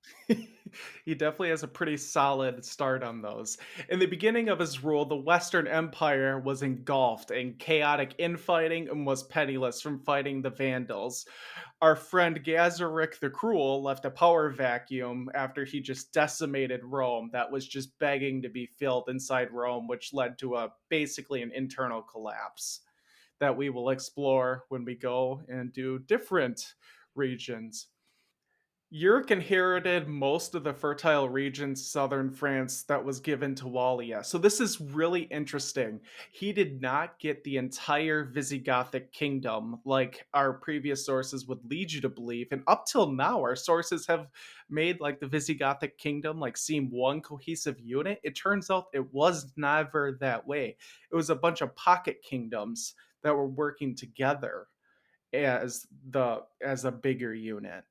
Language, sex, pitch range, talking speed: English, male, 130-155 Hz, 155 wpm